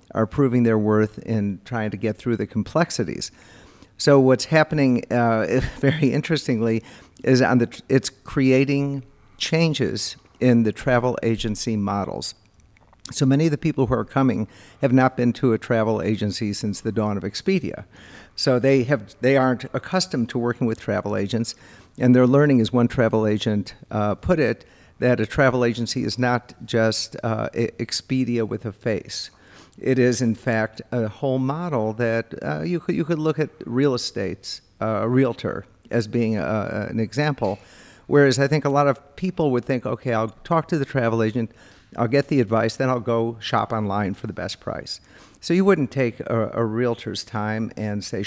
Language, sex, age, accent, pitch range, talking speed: English, male, 50-69, American, 110-135 Hz, 185 wpm